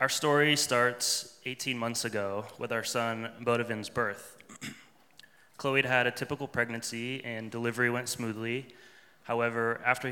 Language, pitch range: English, 110-125 Hz